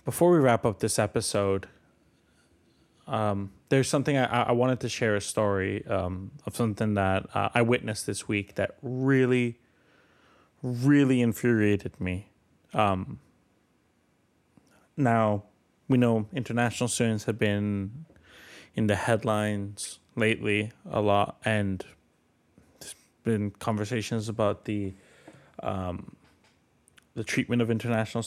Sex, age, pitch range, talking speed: male, 20-39, 100-120 Hz, 115 wpm